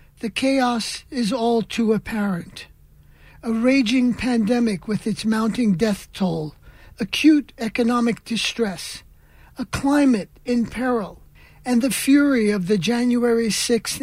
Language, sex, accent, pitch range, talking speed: English, male, American, 205-240 Hz, 120 wpm